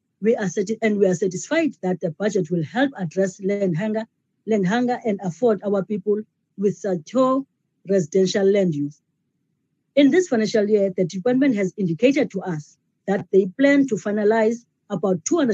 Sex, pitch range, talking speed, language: female, 180-225 Hz, 160 wpm, English